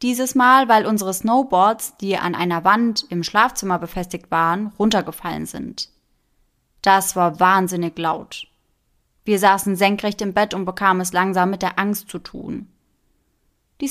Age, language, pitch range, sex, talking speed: 20-39, German, 175-220 Hz, female, 145 wpm